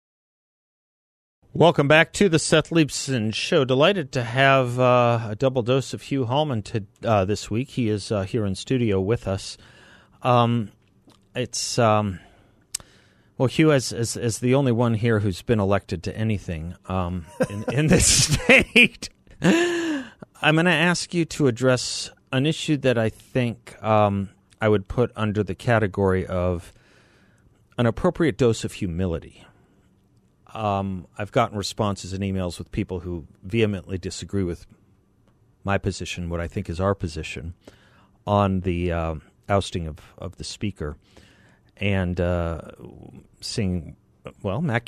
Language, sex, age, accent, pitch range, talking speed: English, male, 30-49, American, 95-125 Hz, 145 wpm